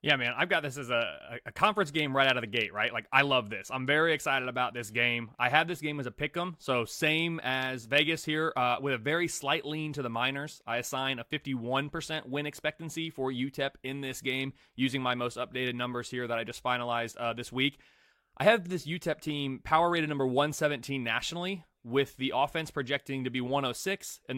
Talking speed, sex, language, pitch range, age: 225 wpm, male, English, 125-155 Hz, 30-49